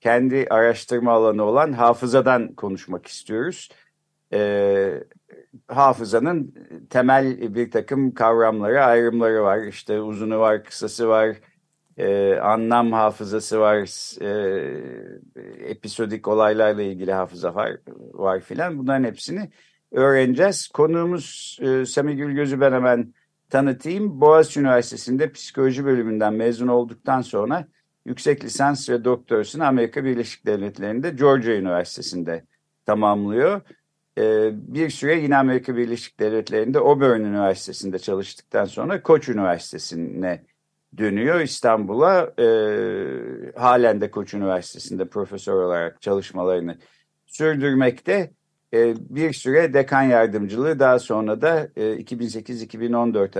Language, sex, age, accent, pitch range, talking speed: Turkish, male, 50-69, native, 110-140 Hz, 100 wpm